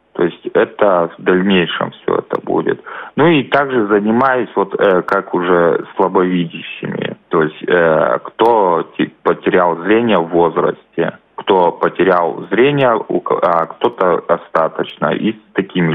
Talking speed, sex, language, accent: 120 wpm, male, Russian, native